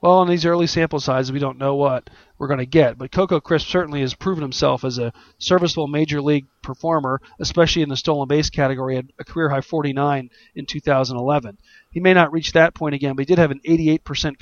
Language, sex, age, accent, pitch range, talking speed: English, male, 40-59, American, 135-160 Hz, 215 wpm